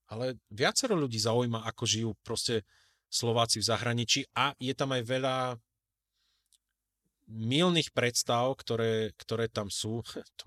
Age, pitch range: 30-49, 110-140 Hz